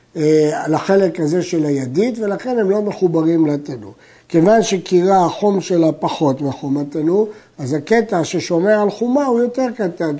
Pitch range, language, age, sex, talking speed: 160-215 Hz, Hebrew, 60-79, male, 145 wpm